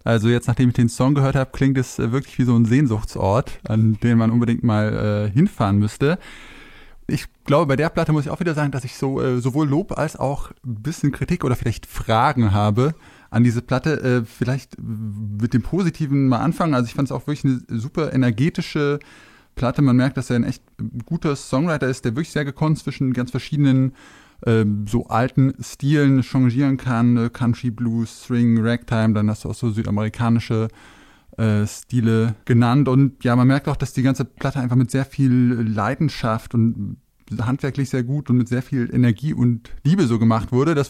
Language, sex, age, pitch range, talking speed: German, male, 20-39, 120-140 Hz, 190 wpm